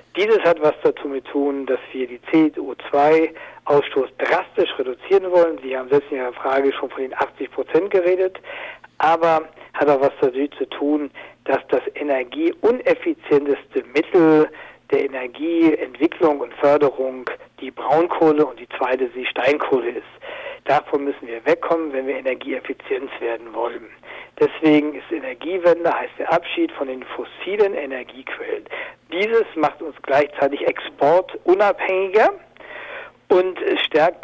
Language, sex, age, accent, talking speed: German, male, 60-79, German, 130 wpm